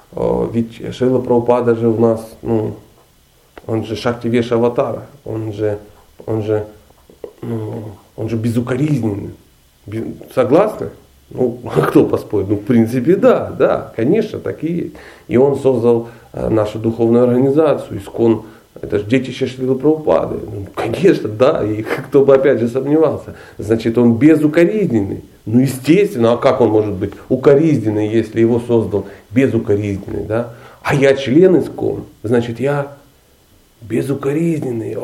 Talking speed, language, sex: 130 wpm, Russian, male